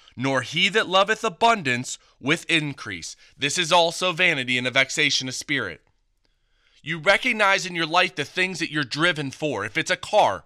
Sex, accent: male, American